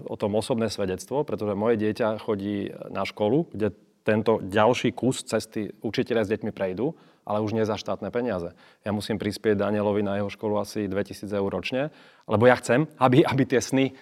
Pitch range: 105-125 Hz